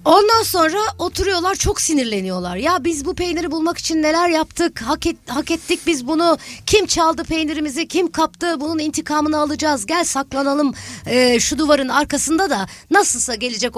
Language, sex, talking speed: Turkish, female, 155 wpm